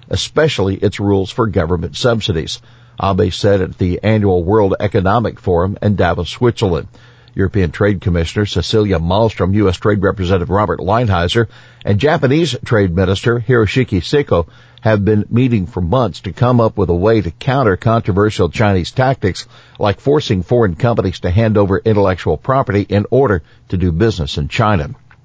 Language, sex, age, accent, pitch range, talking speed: English, male, 50-69, American, 95-120 Hz, 155 wpm